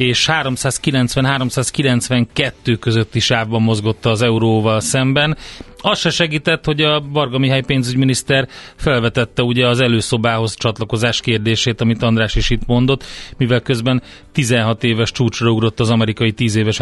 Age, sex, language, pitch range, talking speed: 30-49, male, Hungarian, 115-135 Hz, 135 wpm